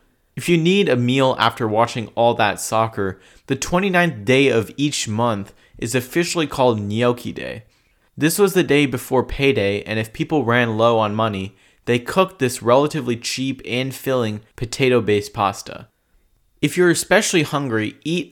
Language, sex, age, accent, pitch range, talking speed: English, male, 20-39, American, 110-140 Hz, 160 wpm